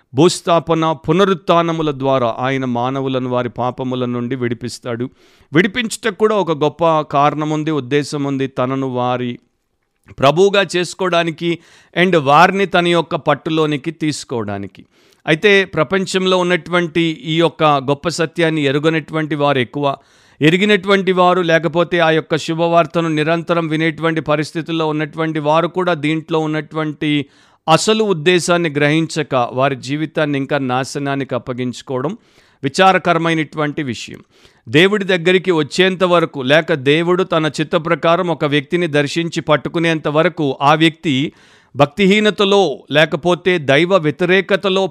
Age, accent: 50-69, native